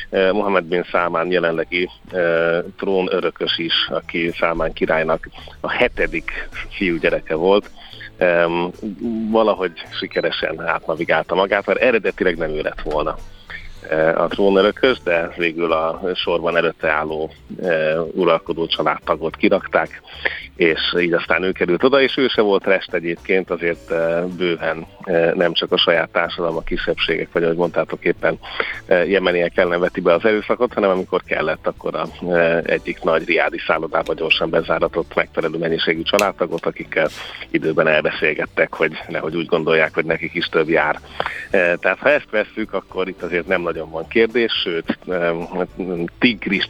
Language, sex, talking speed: Hungarian, male, 140 wpm